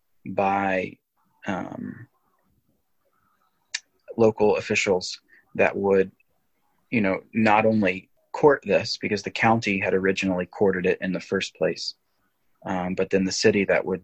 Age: 30-49